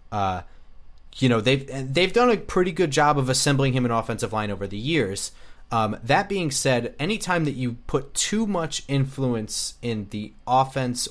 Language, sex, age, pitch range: English, male, 30-49, 110-135 Hz